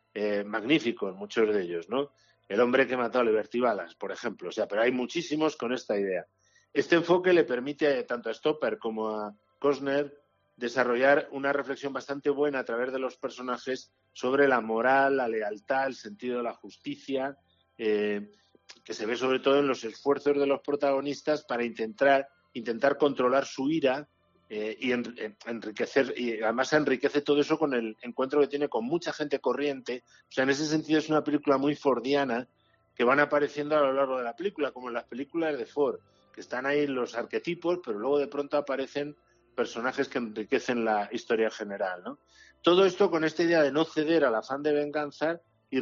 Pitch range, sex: 120-150 Hz, male